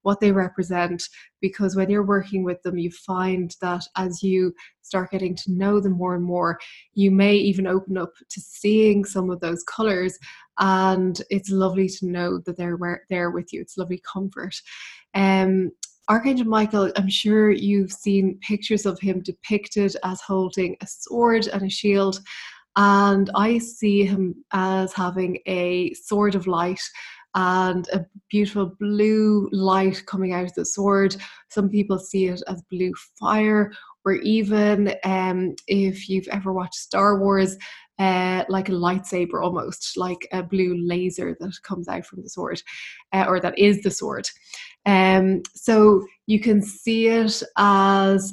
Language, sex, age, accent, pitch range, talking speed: English, female, 20-39, Irish, 185-205 Hz, 160 wpm